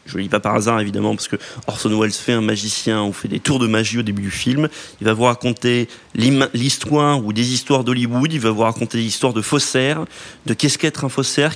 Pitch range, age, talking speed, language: 110-135 Hz, 30-49, 240 wpm, French